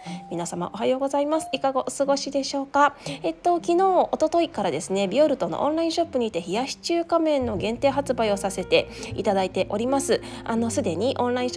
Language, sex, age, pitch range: Japanese, female, 20-39, 190-285 Hz